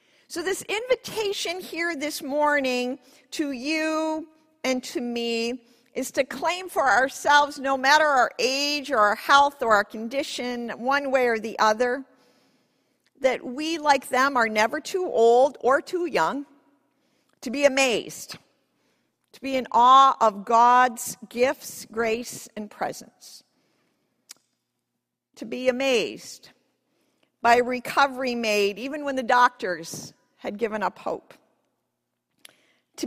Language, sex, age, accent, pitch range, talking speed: English, female, 50-69, American, 245-295 Hz, 125 wpm